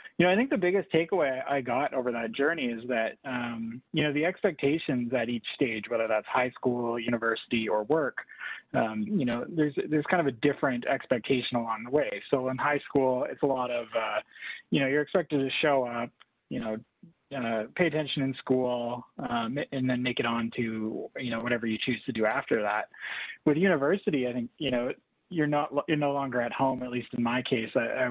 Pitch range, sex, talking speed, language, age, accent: 115-145 Hz, male, 215 wpm, English, 20-39, American